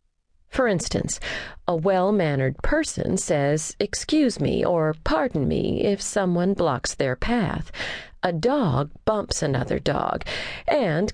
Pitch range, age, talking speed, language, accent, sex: 160-220 Hz, 40-59, 120 wpm, English, American, female